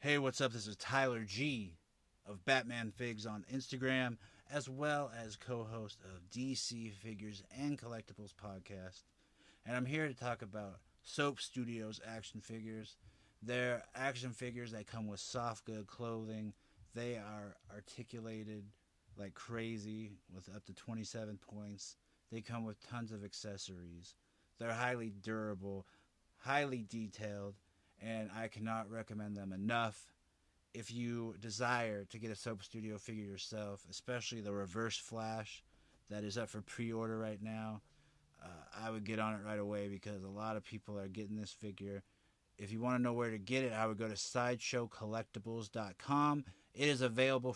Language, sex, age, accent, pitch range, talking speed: English, male, 30-49, American, 100-120 Hz, 155 wpm